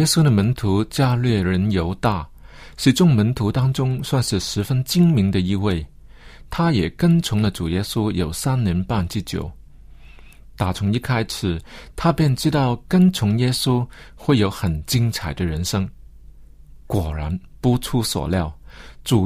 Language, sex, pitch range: Chinese, male, 95-135 Hz